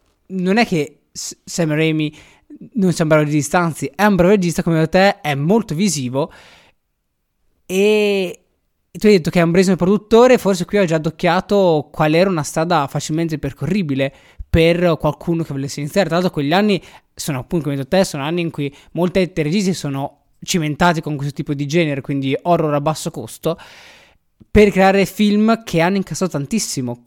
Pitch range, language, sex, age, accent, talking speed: 145-185 Hz, Italian, male, 20-39, native, 175 wpm